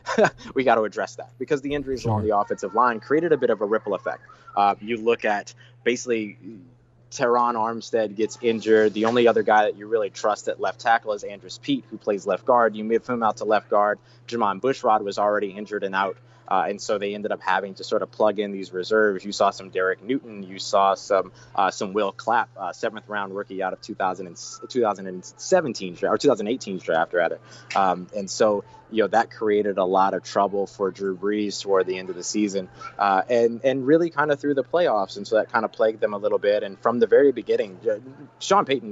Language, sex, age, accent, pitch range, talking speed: English, male, 20-39, American, 100-120 Hz, 225 wpm